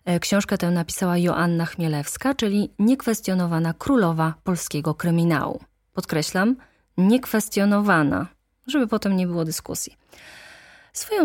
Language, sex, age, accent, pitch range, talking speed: Polish, female, 20-39, native, 170-240 Hz, 95 wpm